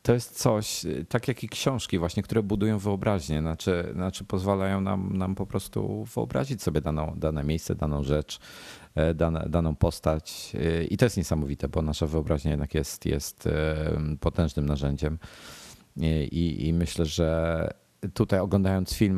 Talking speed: 140 wpm